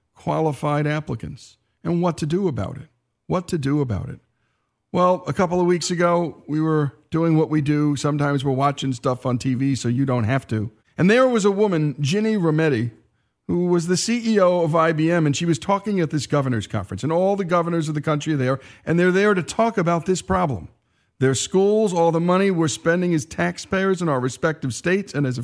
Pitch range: 135-175 Hz